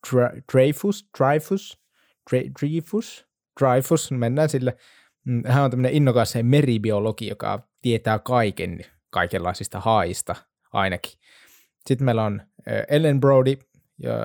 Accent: native